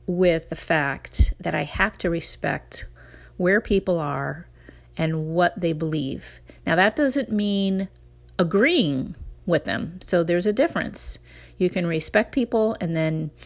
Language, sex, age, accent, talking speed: English, female, 40-59, American, 145 wpm